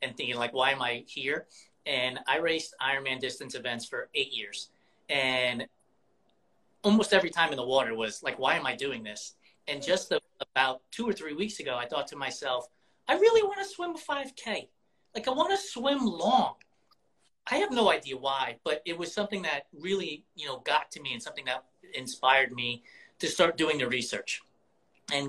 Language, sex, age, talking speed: English, male, 30-49, 190 wpm